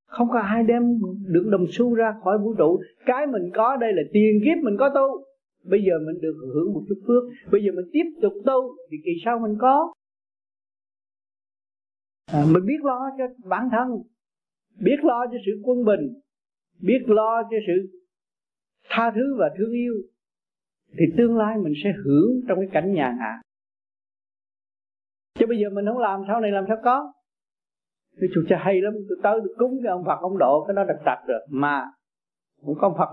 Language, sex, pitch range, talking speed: Vietnamese, male, 155-235 Hz, 190 wpm